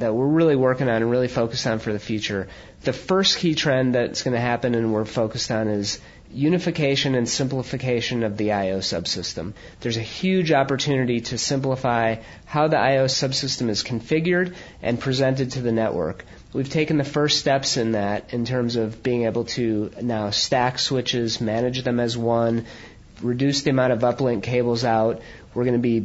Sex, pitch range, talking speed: male, 115-135 Hz, 185 wpm